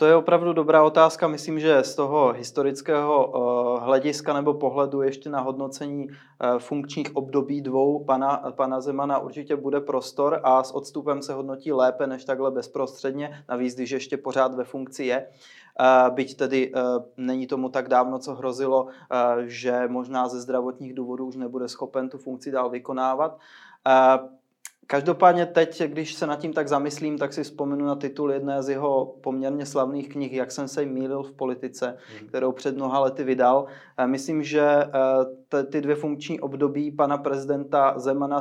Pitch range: 130-145 Hz